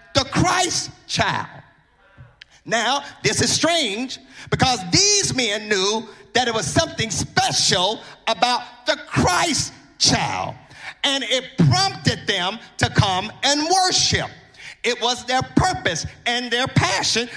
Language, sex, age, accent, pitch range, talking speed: English, male, 40-59, American, 230-315 Hz, 120 wpm